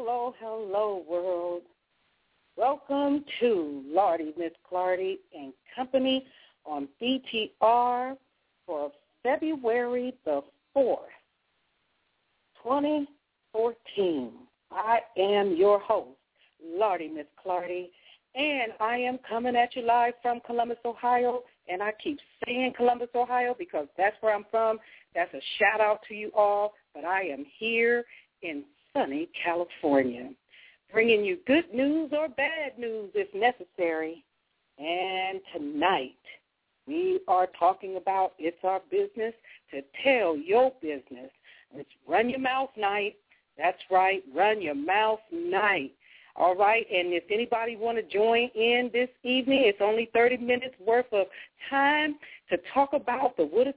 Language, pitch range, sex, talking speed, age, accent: English, 190-265 Hz, female, 130 wpm, 60-79, American